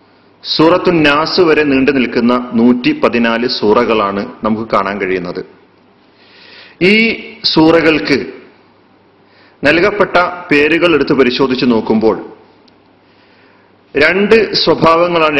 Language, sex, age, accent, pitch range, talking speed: Malayalam, male, 40-59, native, 130-180 Hz, 65 wpm